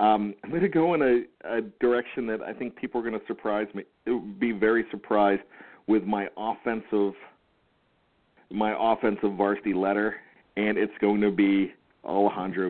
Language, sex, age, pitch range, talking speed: English, male, 40-59, 100-120 Hz, 170 wpm